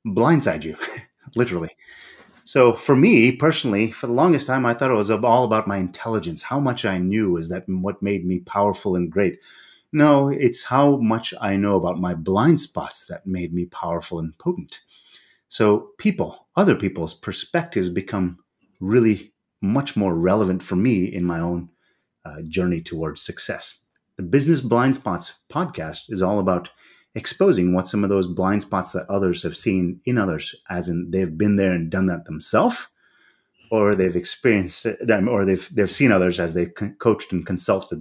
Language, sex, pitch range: English, male, 90-110 Hz